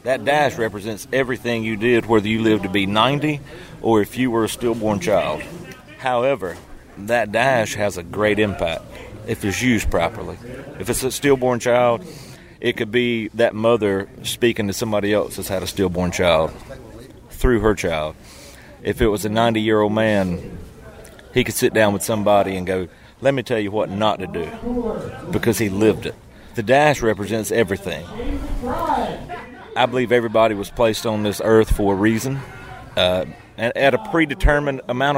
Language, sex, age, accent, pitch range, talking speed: English, male, 40-59, American, 105-130 Hz, 170 wpm